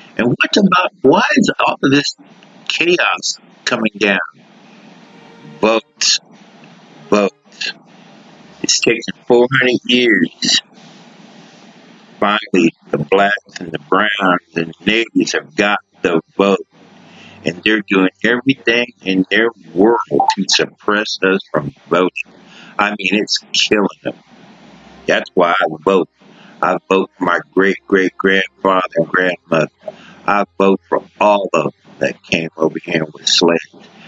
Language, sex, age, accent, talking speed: English, male, 60-79, American, 125 wpm